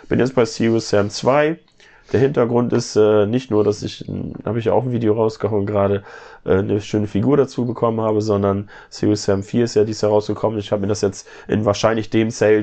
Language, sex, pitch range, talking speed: German, male, 100-115 Hz, 230 wpm